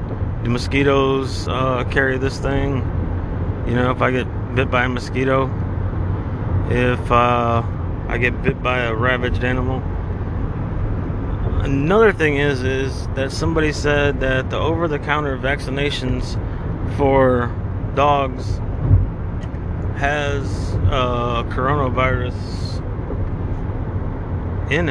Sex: male